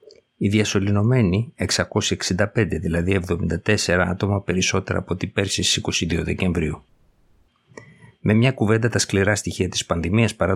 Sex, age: male, 50-69